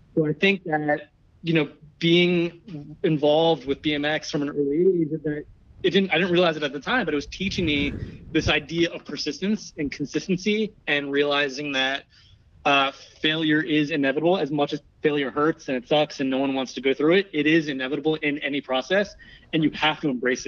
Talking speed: 200 wpm